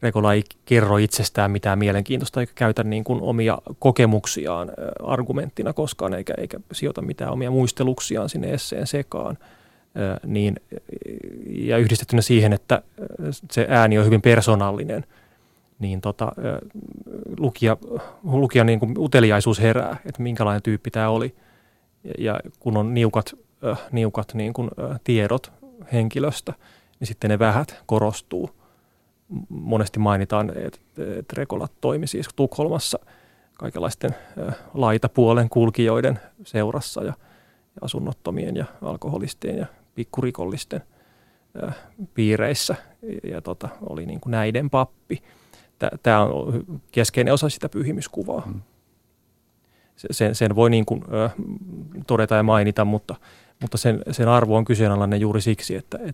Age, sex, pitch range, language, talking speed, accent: 30-49, male, 110-125 Hz, Finnish, 105 wpm, native